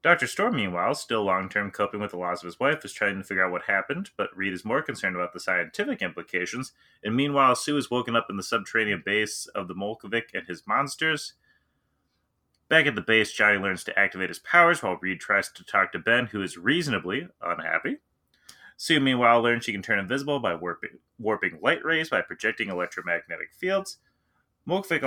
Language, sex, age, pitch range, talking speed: English, male, 30-49, 95-130 Hz, 195 wpm